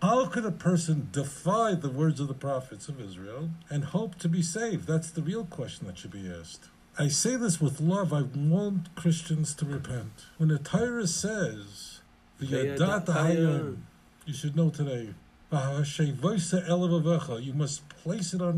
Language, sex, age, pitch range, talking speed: English, male, 60-79, 140-175 Hz, 155 wpm